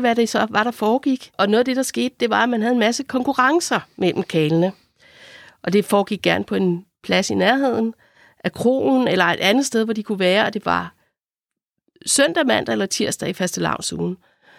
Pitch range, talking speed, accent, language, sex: 200-245 Hz, 205 wpm, native, Danish, female